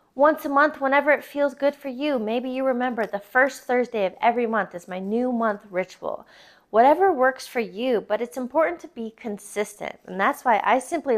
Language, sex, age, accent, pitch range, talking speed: English, female, 20-39, American, 210-270 Hz, 205 wpm